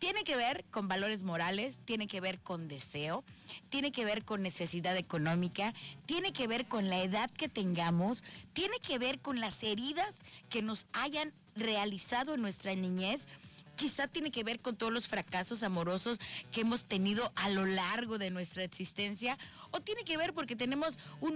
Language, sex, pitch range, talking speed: Spanish, female, 185-240 Hz, 175 wpm